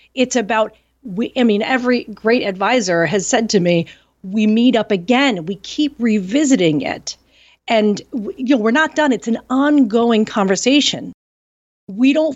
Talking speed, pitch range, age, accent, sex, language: 160 wpm, 170-235 Hz, 40-59, American, female, English